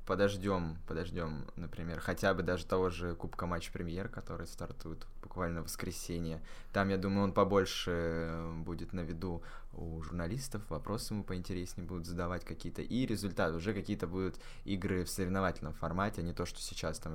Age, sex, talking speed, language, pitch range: 20-39, male, 165 wpm, Russian, 85-100 Hz